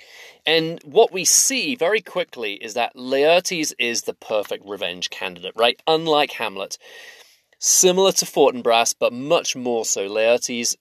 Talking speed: 140 wpm